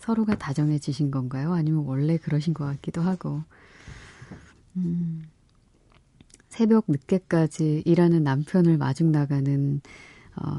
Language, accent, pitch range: Korean, native, 140-180 Hz